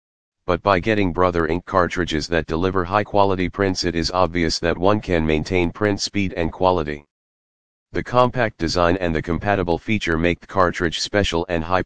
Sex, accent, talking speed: male, American, 170 wpm